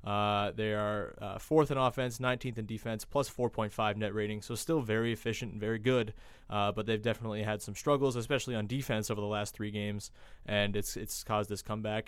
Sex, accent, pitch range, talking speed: male, American, 110-135 Hz, 220 wpm